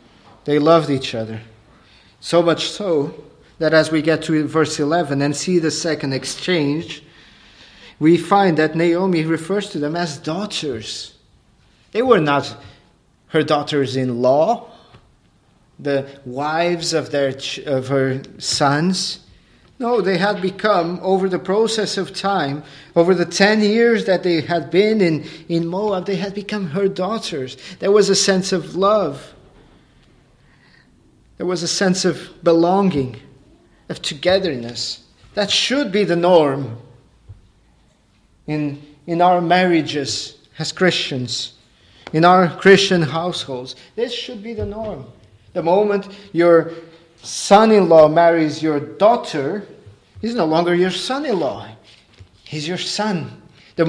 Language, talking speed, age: English, 130 wpm, 40-59